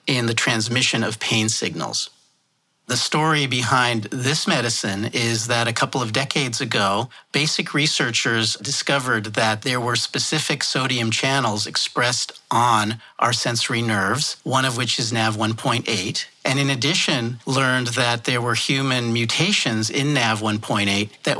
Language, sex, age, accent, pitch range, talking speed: English, male, 50-69, American, 110-140 Hz, 135 wpm